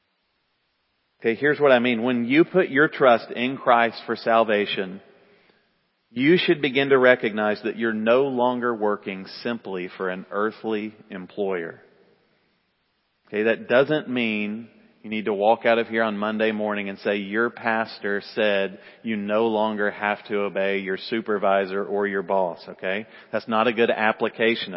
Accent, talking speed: American, 160 wpm